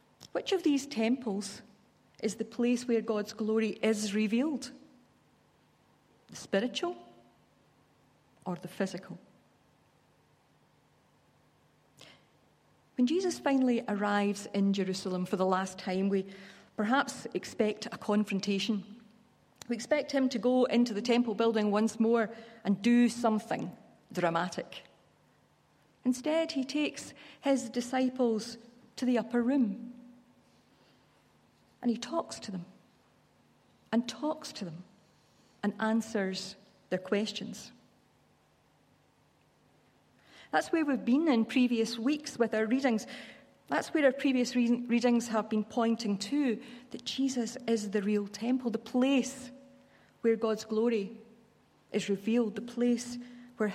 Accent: British